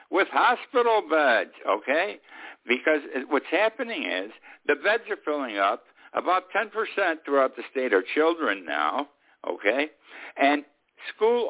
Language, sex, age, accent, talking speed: English, male, 60-79, American, 125 wpm